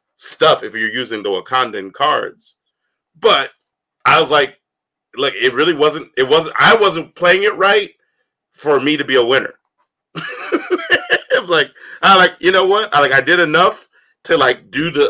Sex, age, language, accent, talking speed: male, 30-49, English, American, 180 wpm